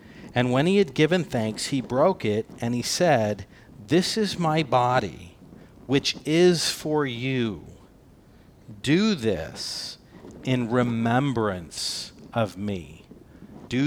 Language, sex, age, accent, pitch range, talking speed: English, male, 50-69, American, 115-150 Hz, 115 wpm